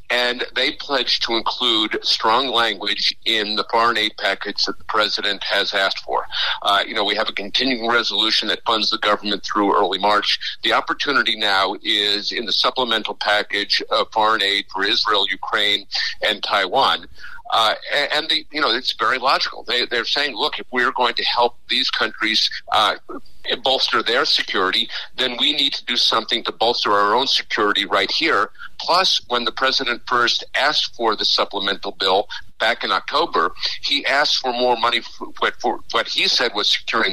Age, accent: 50-69, American